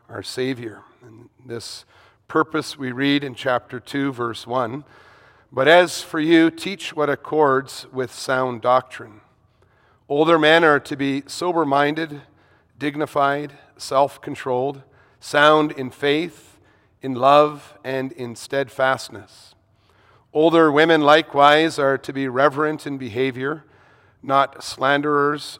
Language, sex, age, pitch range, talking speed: English, male, 40-59, 125-150 Hz, 115 wpm